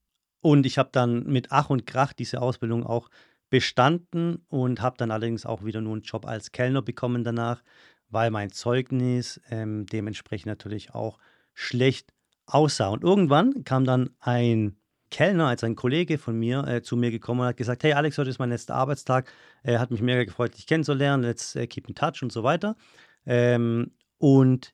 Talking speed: 185 wpm